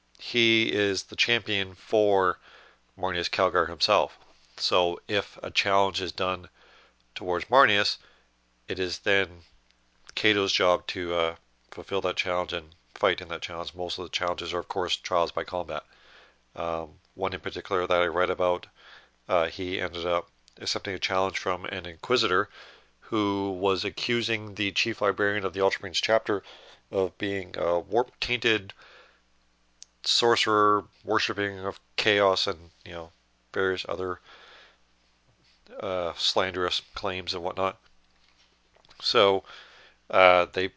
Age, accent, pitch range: 40-59, American, 85-100 Hz